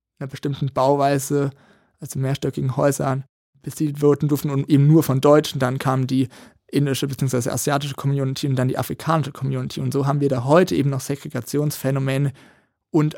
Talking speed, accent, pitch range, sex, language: 165 wpm, German, 135-145 Hz, male, German